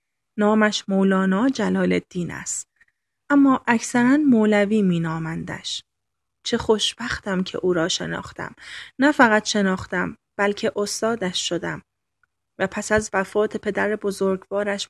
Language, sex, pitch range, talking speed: Persian, female, 195-235 Hz, 110 wpm